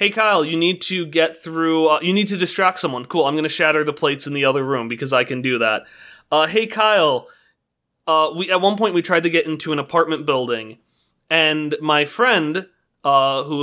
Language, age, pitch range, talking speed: English, 30-49, 140-170 Hz, 215 wpm